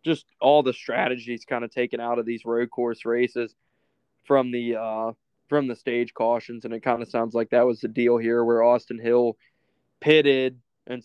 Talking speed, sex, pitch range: 195 wpm, male, 120-130 Hz